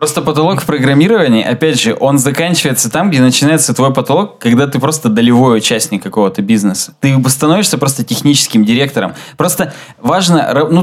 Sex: male